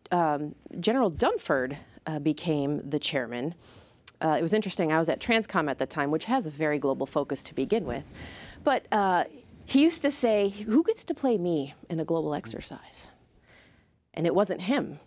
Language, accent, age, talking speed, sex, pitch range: English, American, 30-49, 185 wpm, female, 150-225 Hz